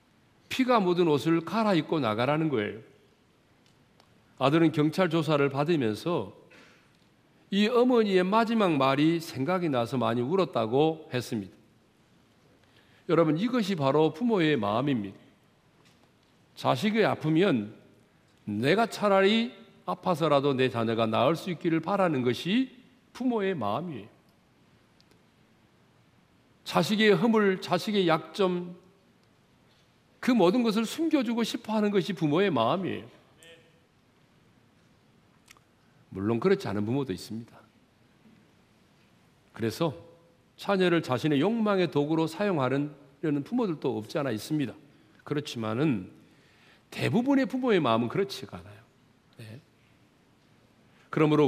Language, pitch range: Korean, 130-200 Hz